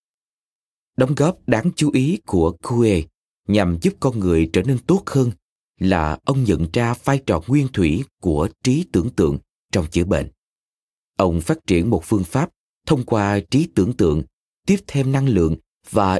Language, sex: Vietnamese, male